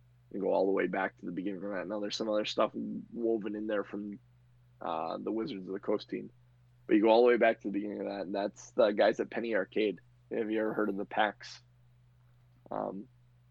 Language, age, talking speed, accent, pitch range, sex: English, 20-39, 240 wpm, American, 100-125 Hz, male